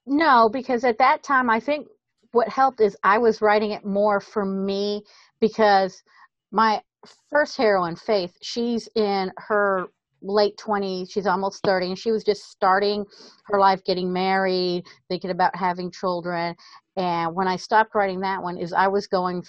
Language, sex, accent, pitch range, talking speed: English, female, American, 175-205 Hz, 165 wpm